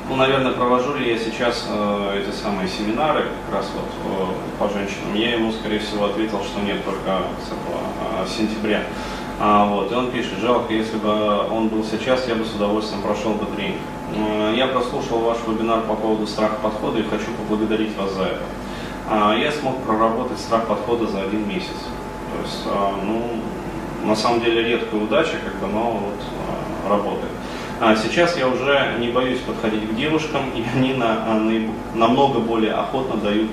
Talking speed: 160 wpm